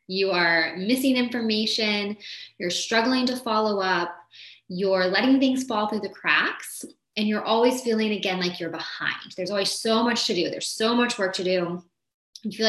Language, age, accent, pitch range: English, 20-39, American, 185-240 Hz